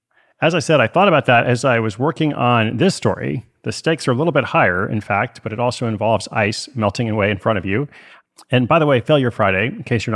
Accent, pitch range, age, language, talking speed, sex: American, 105-135 Hz, 30-49, English, 255 wpm, male